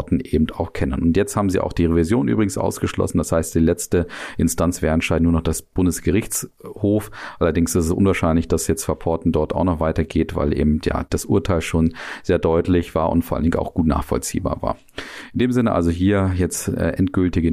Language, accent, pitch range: German, German, 85-100 Hz